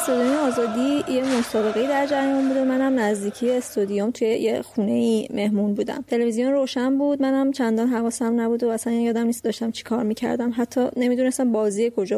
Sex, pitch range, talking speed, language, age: female, 220-255 Hz, 175 wpm, Persian, 30-49